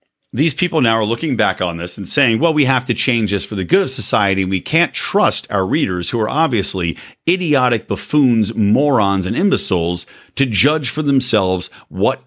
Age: 50-69